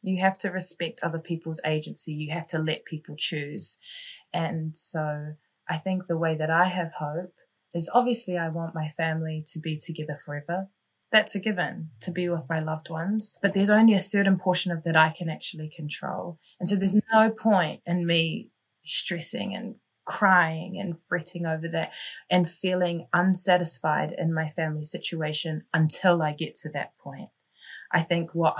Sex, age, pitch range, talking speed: female, 20-39, 155-175 Hz, 175 wpm